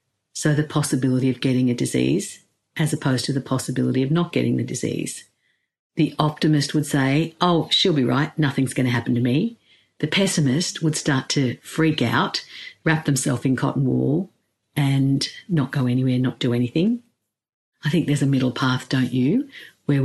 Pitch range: 130-155 Hz